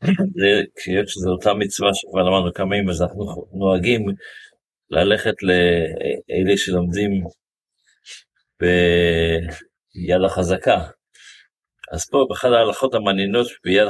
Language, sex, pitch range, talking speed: Hebrew, male, 90-120 Hz, 95 wpm